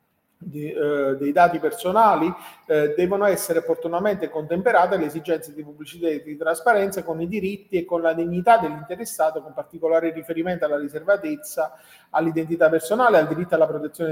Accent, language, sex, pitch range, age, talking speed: native, Italian, male, 155-185 Hz, 40-59, 150 wpm